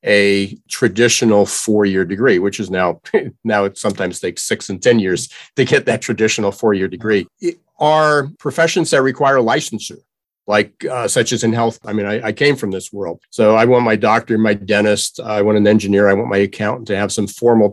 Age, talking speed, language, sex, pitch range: 50-69, 205 wpm, English, male, 105-130 Hz